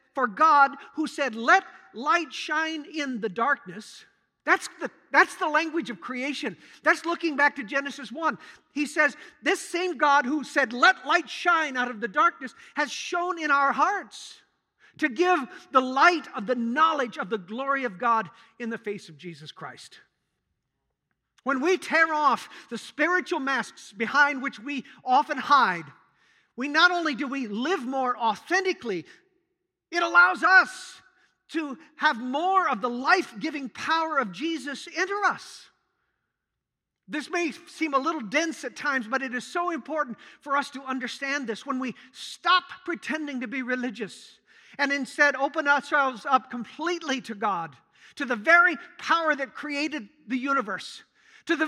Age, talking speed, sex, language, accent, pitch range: 50-69, 160 wpm, male, English, American, 255-330 Hz